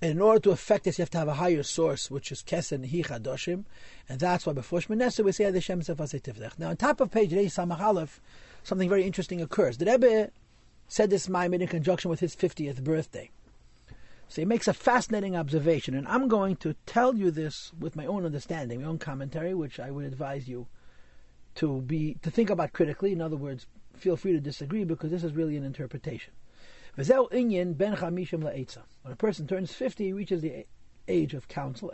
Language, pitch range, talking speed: English, 145-195 Hz, 200 wpm